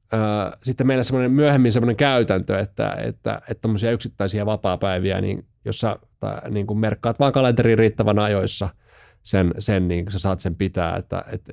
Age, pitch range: 30-49, 100-115 Hz